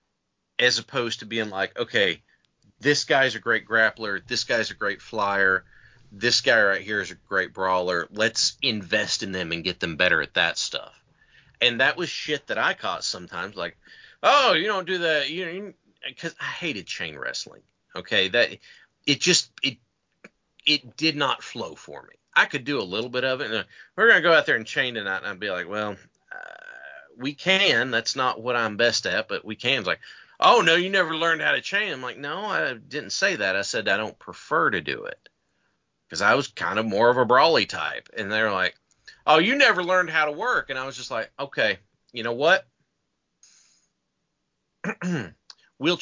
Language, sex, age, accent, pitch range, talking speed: English, male, 30-49, American, 110-165 Hz, 205 wpm